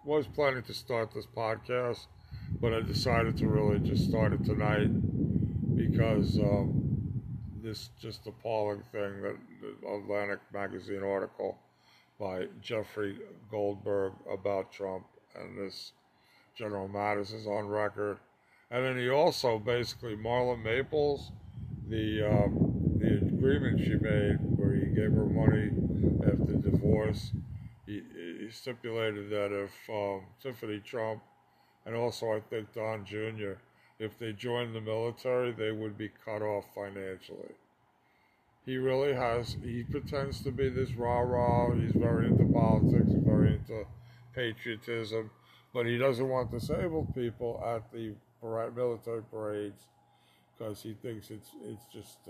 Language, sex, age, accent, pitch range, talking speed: English, male, 50-69, American, 105-120 Hz, 130 wpm